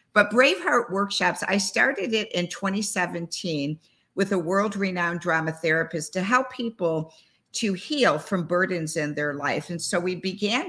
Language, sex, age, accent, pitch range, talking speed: English, female, 50-69, American, 170-200 Hz, 150 wpm